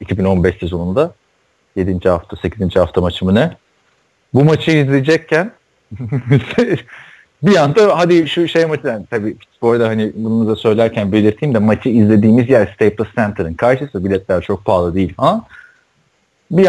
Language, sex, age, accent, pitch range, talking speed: Turkish, male, 40-59, native, 110-155 Hz, 135 wpm